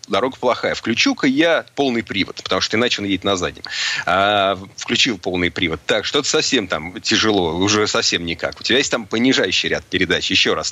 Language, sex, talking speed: Russian, male, 190 wpm